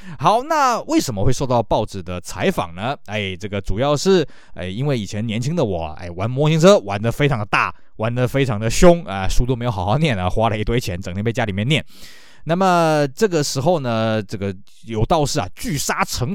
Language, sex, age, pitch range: Chinese, male, 20-39, 110-160 Hz